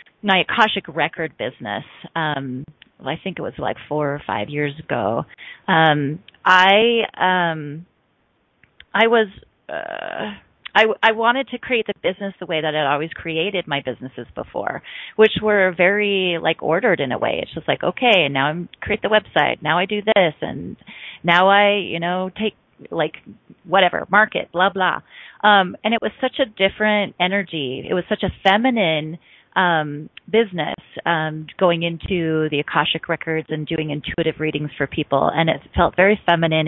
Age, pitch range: 30-49, 155-205 Hz